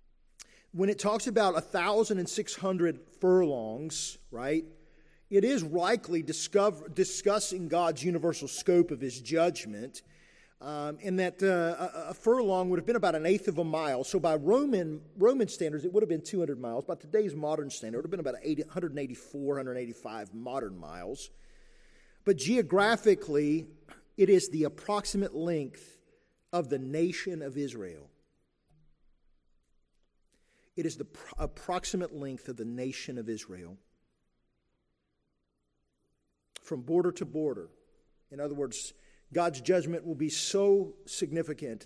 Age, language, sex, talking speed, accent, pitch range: 40-59, English, male, 135 wpm, American, 120-180 Hz